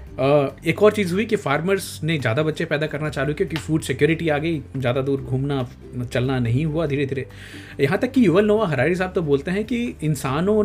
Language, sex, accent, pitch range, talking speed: Hindi, male, native, 125-165 Hz, 205 wpm